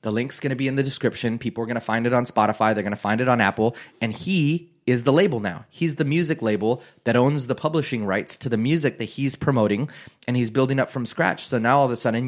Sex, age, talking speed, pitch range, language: male, 30-49, 260 wpm, 110-130 Hz, English